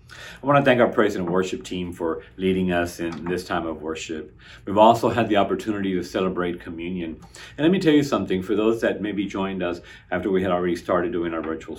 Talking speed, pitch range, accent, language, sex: 230 wpm, 90-120 Hz, American, English, male